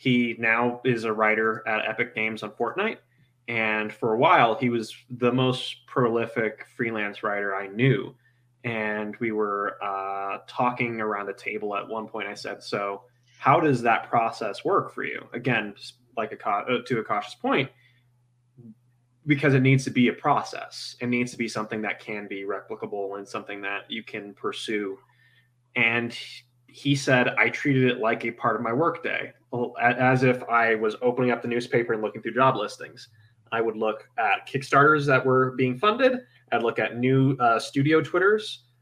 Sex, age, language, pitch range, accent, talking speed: male, 20-39, English, 110-130 Hz, American, 180 wpm